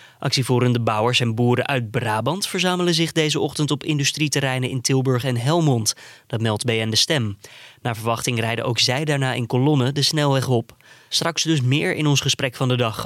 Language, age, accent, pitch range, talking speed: Dutch, 20-39, Dutch, 120-145 Hz, 190 wpm